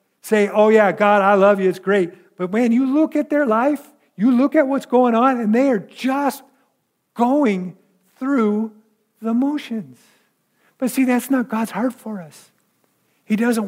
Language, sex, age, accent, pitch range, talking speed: English, male, 50-69, American, 180-235 Hz, 175 wpm